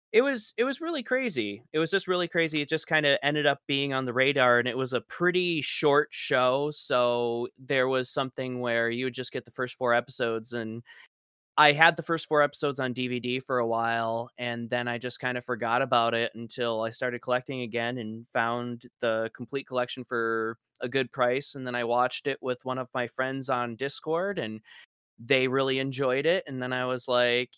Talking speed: 215 wpm